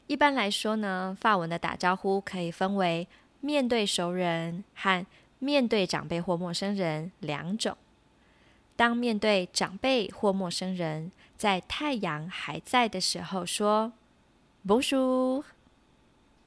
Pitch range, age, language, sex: 185-235 Hz, 20-39, Chinese, female